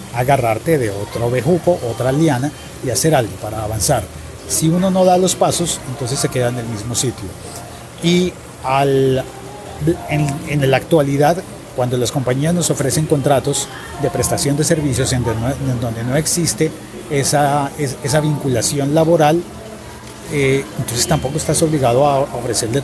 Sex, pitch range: male, 125-160 Hz